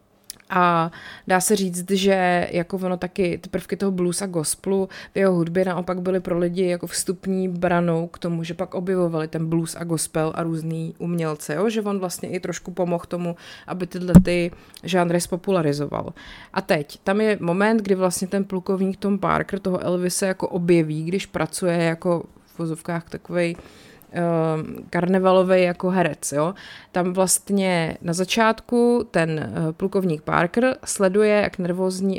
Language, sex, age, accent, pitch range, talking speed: Czech, female, 20-39, native, 170-195 Hz, 155 wpm